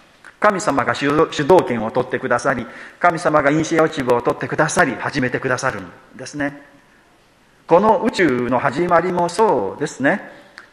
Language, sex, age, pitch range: Japanese, male, 40-59, 130-175 Hz